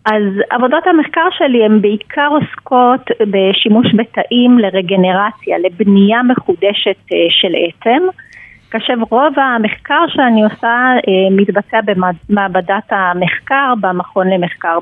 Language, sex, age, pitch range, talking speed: Hebrew, female, 30-49, 195-245 Hz, 100 wpm